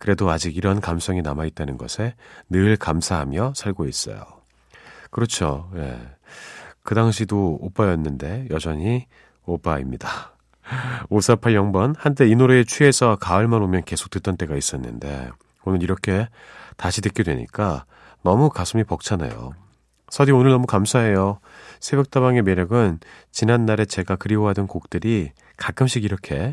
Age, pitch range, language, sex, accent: 40-59, 85-125 Hz, Korean, male, native